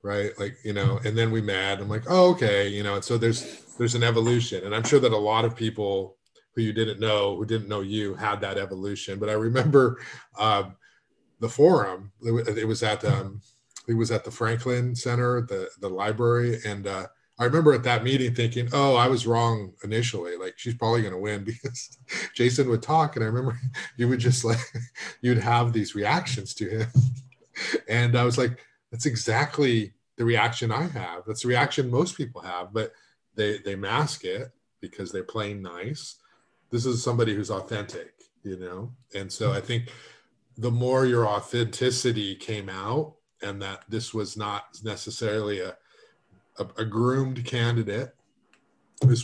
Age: 30-49